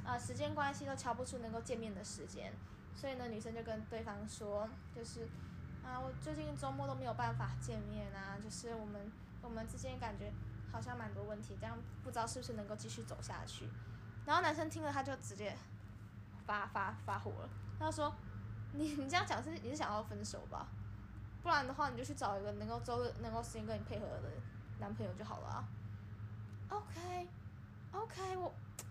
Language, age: Chinese, 10-29